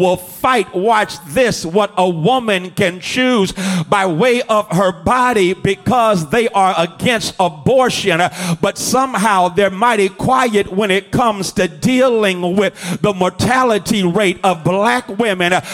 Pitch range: 185-235 Hz